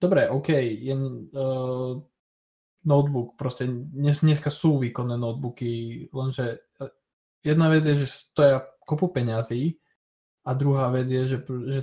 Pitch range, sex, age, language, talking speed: 110-130 Hz, male, 20-39, Slovak, 125 wpm